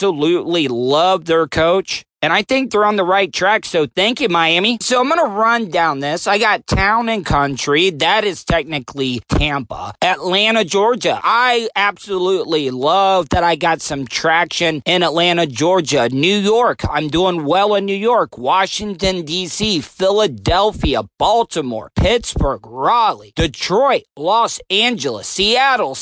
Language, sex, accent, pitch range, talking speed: English, male, American, 170-225 Hz, 150 wpm